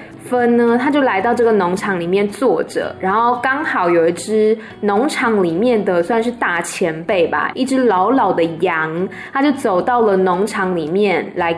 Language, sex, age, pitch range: Chinese, female, 10-29, 195-270 Hz